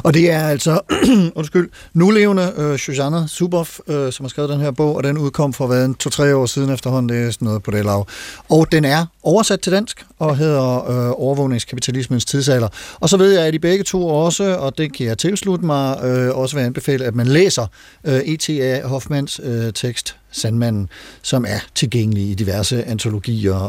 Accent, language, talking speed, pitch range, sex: native, Danish, 195 wpm, 115-160 Hz, male